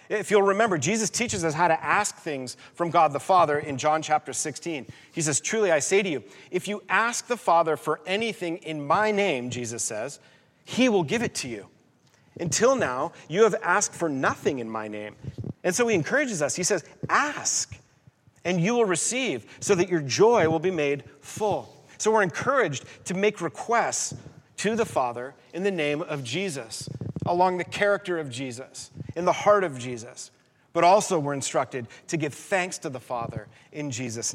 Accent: American